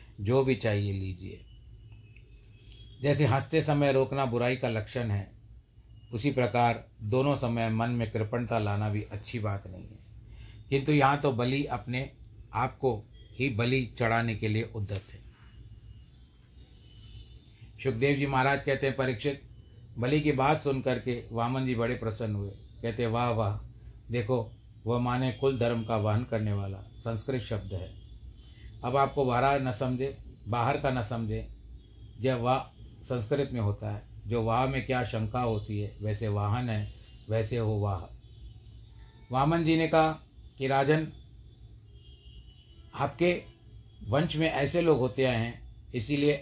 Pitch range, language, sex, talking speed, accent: 110-130 Hz, Hindi, male, 145 wpm, native